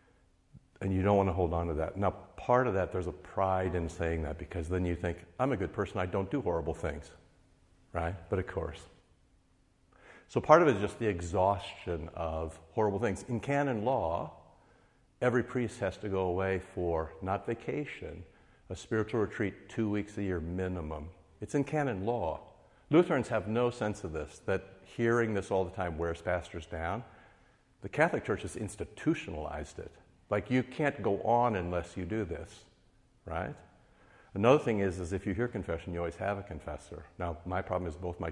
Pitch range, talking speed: 85-110 Hz, 190 wpm